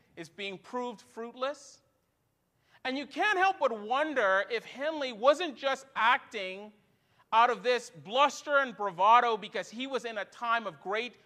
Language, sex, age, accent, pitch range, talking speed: English, male, 40-59, American, 215-285 Hz, 155 wpm